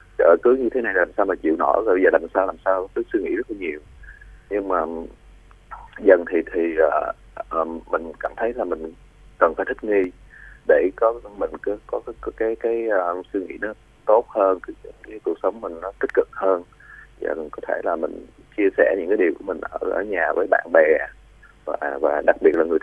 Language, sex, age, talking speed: Vietnamese, male, 20-39, 235 wpm